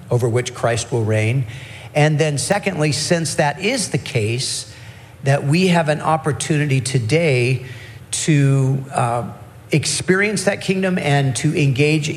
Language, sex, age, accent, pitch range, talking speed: English, male, 50-69, American, 120-150 Hz, 135 wpm